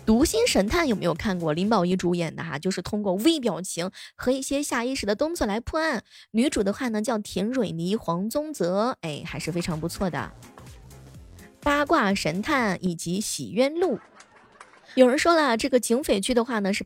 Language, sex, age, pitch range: Chinese, female, 20-39, 185-260 Hz